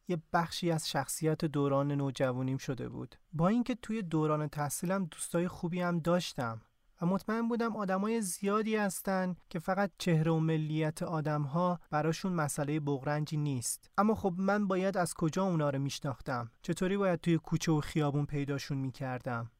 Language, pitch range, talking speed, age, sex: Persian, 145-180 Hz, 155 wpm, 30-49, male